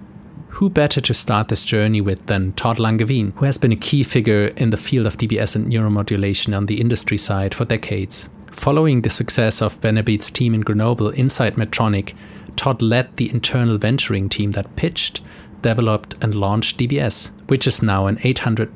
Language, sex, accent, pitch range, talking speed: English, male, German, 105-120 Hz, 180 wpm